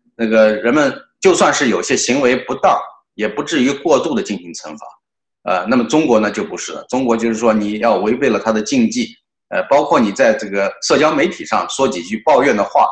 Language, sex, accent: Chinese, male, native